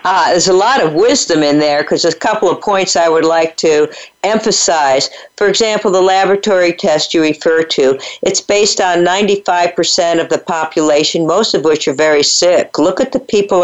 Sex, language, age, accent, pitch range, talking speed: female, English, 50-69, American, 155-205 Hz, 190 wpm